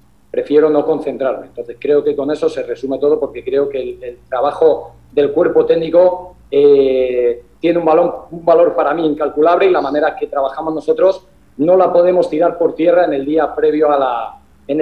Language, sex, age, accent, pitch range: Japanese, male, 40-59, Spanish, 145-175 Hz